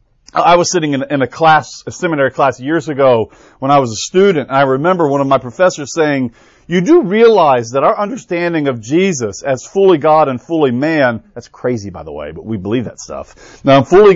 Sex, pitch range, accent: male, 135-180 Hz, American